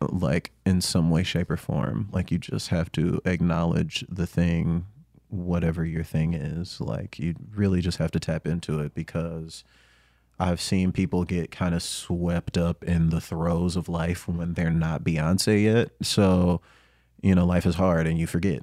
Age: 30-49